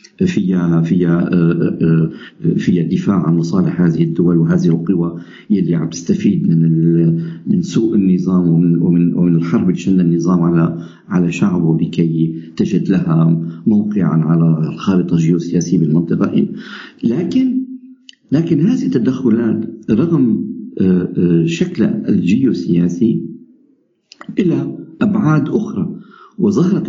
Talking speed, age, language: 95 wpm, 50-69, Arabic